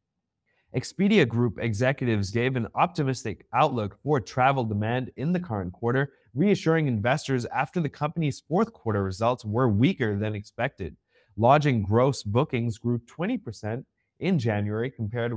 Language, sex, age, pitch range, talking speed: English, male, 30-49, 110-150 Hz, 135 wpm